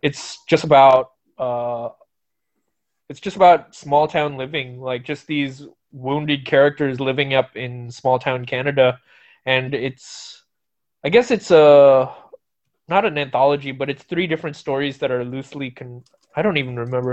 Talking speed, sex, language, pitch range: 150 wpm, male, English, 125-145 Hz